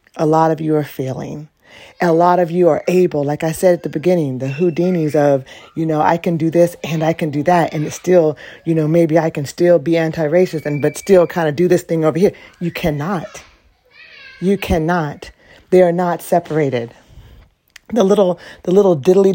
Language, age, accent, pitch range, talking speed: English, 40-59, American, 155-190 Hz, 205 wpm